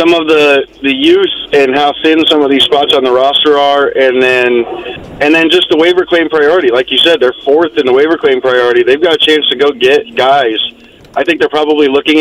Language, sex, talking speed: English, male, 235 wpm